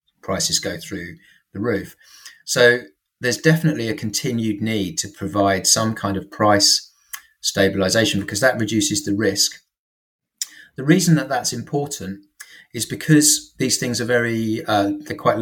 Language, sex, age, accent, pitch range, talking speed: English, male, 30-49, British, 100-130 Hz, 145 wpm